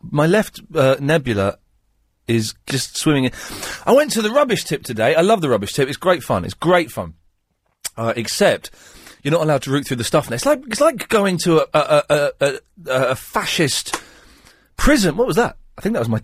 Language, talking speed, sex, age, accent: English, 215 wpm, male, 40-59, British